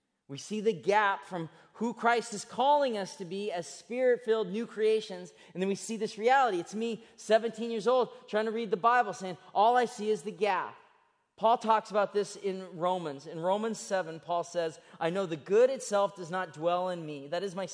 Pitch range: 175-225 Hz